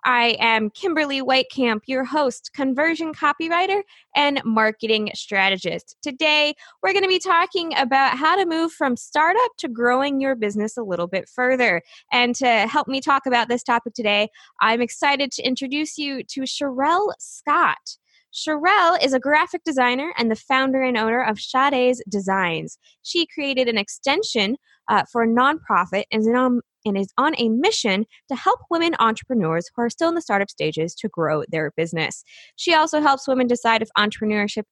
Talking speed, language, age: 170 wpm, English, 20-39